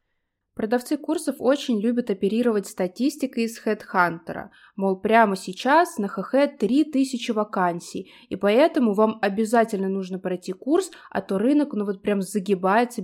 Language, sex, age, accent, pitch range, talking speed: Russian, female, 20-39, native, 195-255 Hz, 135 wpm